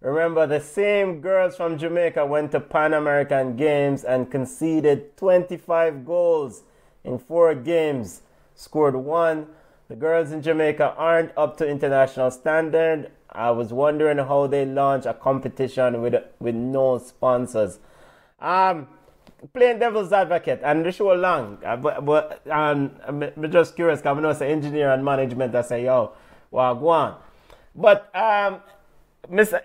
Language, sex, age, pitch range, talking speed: English, male, 30-49, 135-175 Hz, 140 wpm